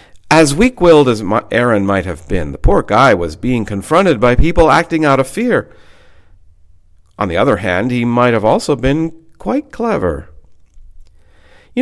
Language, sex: English, male